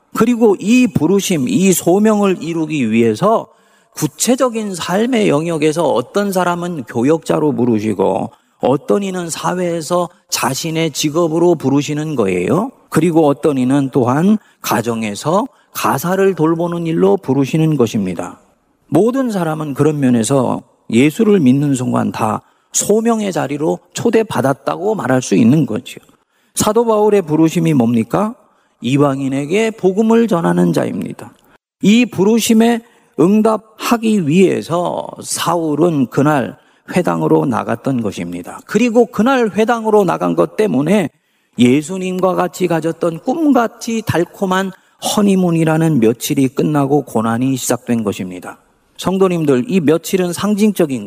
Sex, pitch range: male, 140-205 Hz